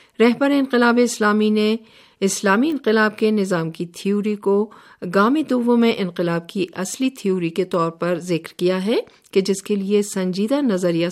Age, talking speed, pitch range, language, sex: 50-69, 160 wpm, 175-225 Hz, Urdu, female